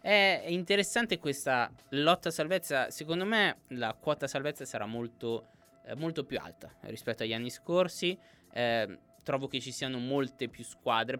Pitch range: 110-135 Hz